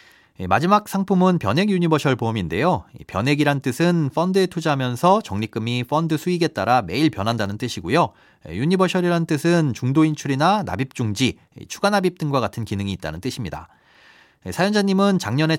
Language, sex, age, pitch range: Korean, male, 30-49, 115-170 Hz